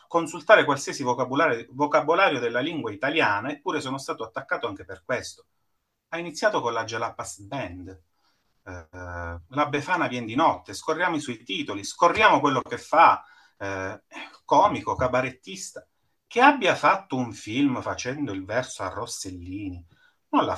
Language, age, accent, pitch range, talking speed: Italian, 30-49, native, 95-150 Hz, 145 wpm